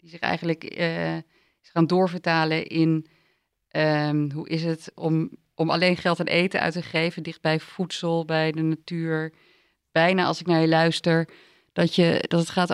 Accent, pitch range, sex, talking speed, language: Dutch, 160-175 Hz, female, 175 wpm, Dutch